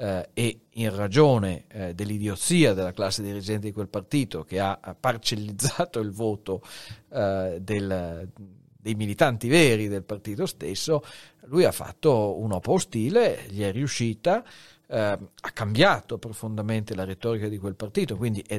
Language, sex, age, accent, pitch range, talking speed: Italian, male, 40-59, native, 105-120 Hz, 140 wpm